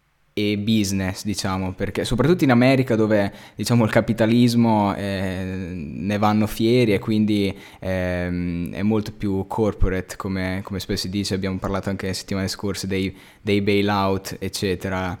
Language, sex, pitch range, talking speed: Italian, male, 95-110 Hz, 145 wpm